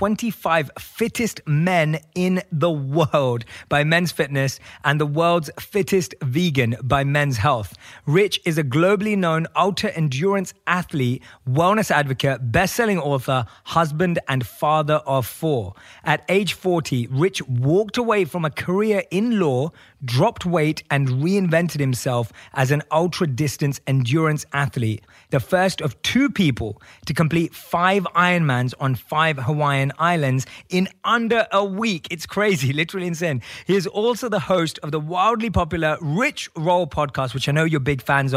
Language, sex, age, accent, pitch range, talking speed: English, male, 20-39, British, 135-185 Hz, 150 wpm